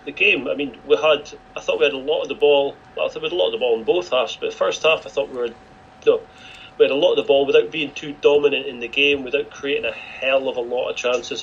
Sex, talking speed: male, 310 wpm